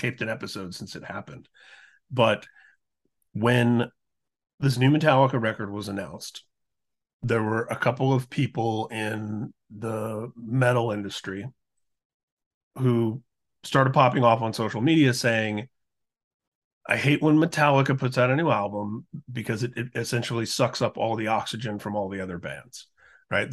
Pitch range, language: 110-125 Hz, English